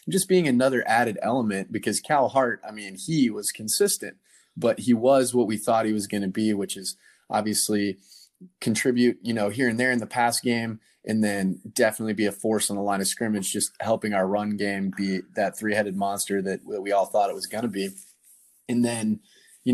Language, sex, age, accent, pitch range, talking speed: English, male, 20-39, American, 100-120 Hz, 215 wpm